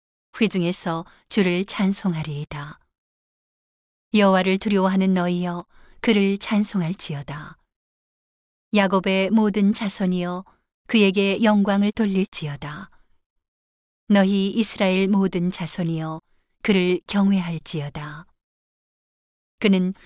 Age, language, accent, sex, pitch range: 40-59, Korean, native, female, 165-200 Hz